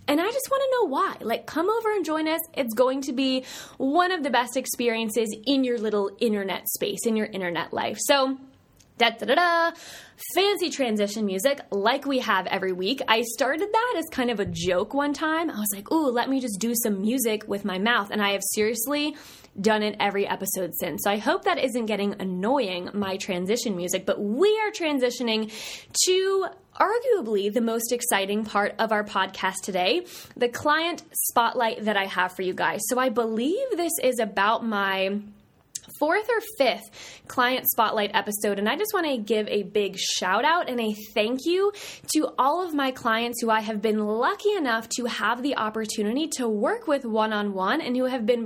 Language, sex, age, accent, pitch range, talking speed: English, female, 20-39, American, 210-290 Hz, 195 wpm